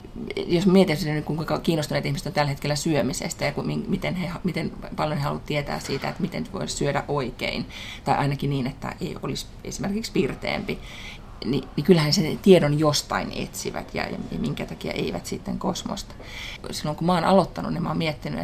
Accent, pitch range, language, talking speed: native, 140-180 Hz, Finnish, 180 wpm